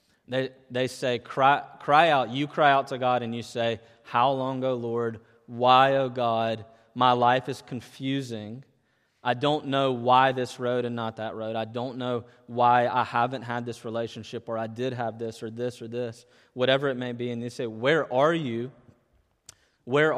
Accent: American